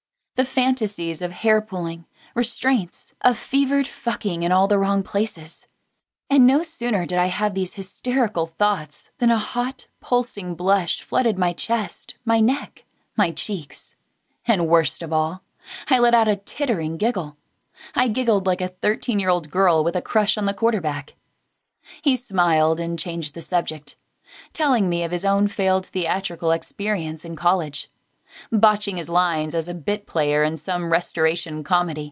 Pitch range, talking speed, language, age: 165-230 Hz, 155 wpm, English, 20-39